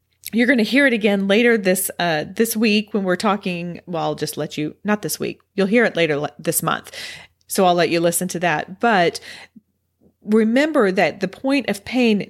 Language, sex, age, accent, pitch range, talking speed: English, female, 40-59, American, 165-210 Hz, 210 wpm